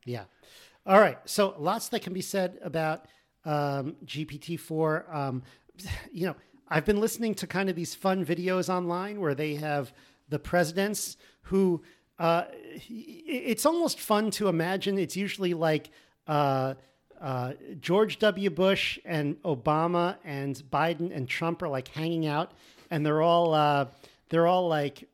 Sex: male